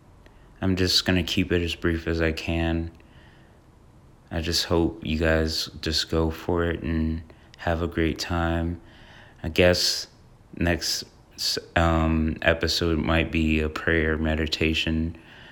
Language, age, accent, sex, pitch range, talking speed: English, 20-39, American, male, 80-90 Hz, 130 wpm